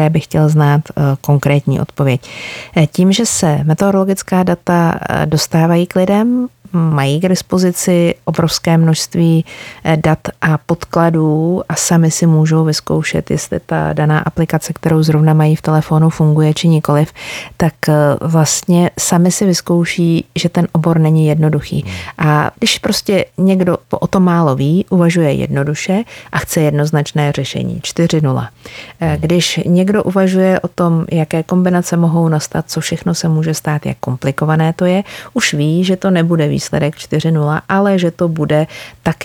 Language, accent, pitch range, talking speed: Czech, native, 150-180 Hz, 145 wpm